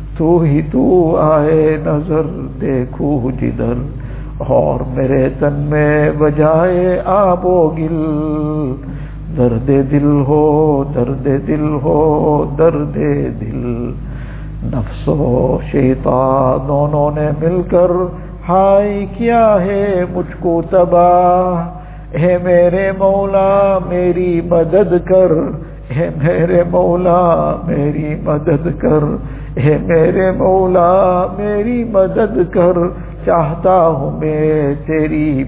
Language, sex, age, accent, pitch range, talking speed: English, male, 60-79, Indian, 150-180 Hz, 55 wpm